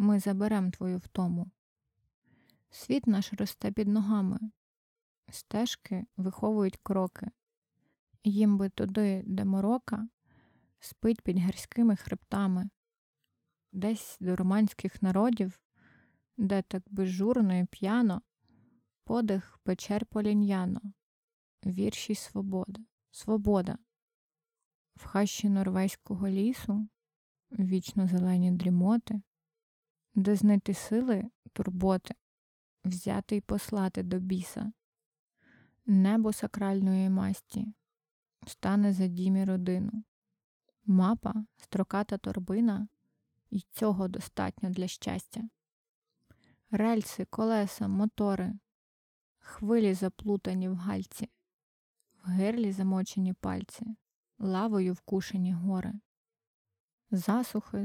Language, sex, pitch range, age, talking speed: Ukrainian, female, 190-215 Hz, 20-39, 85 wpm